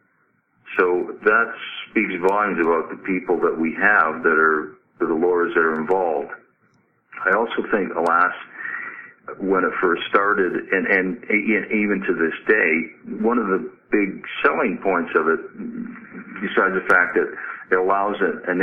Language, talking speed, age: English, 150 wpm, 50-69